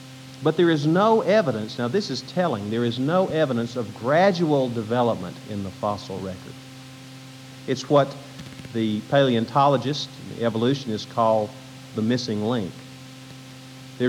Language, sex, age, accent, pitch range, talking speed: English, male, 50-69, American, 115-130 Hz, 130 wpm